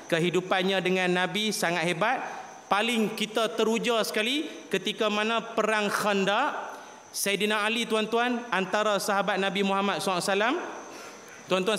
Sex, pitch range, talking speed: male, 185-245 Hz, 110 wpm